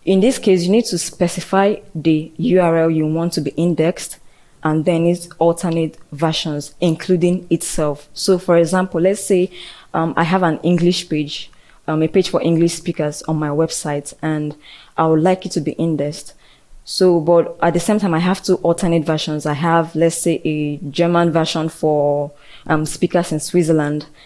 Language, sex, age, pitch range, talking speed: English, female, 20-39, 155-180 Hz, 180 wpm